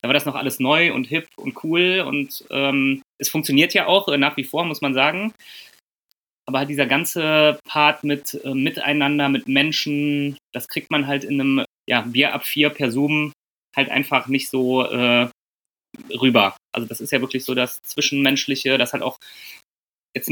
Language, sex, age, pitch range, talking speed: German, male, 20-39, 135-150 Hz, 185 wpm